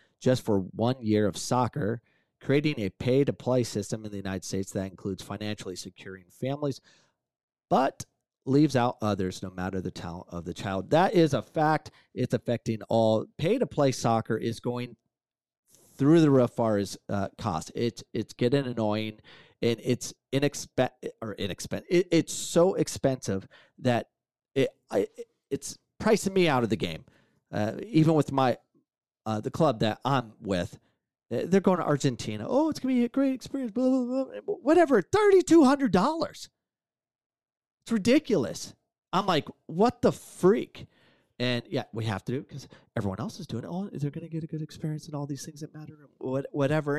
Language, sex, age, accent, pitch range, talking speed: English, male, 40-59, American, 110-160 Hz, 175 wpm